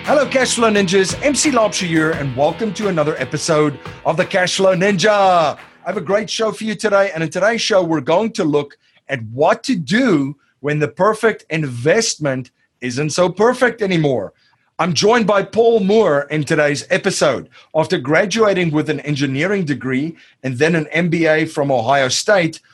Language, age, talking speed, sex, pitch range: English, 40-59, 170 wpm, male, 135-185 Hz